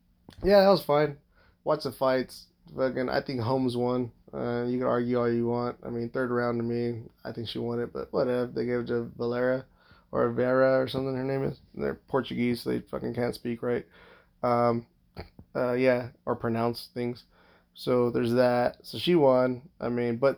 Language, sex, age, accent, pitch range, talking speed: English, male, 20-39, American, 120-135 Hz, 190 wpm